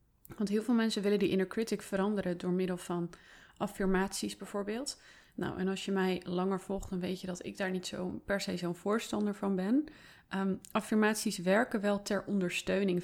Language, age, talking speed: Dutch, 30-49, 180 wpm